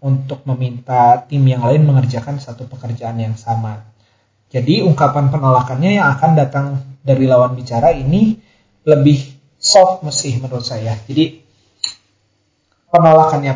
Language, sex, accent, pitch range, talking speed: Indonesian, male, native, 120-145 Hz, 120 wpm